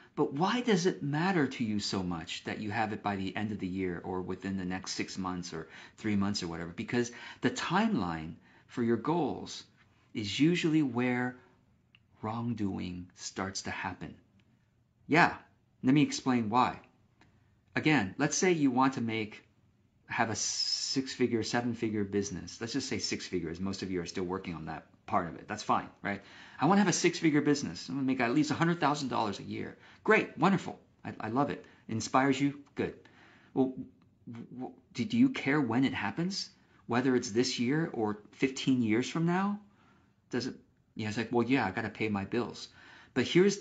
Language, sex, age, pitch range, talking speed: English, male, 40-59, 100-135 Hz, 195 wpm